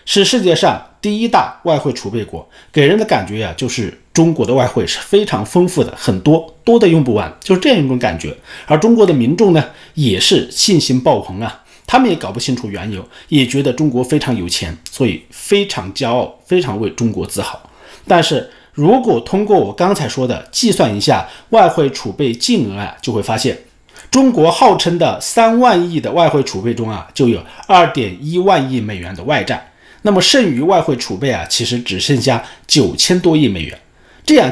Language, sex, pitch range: Chinese, male, 115-170 Hz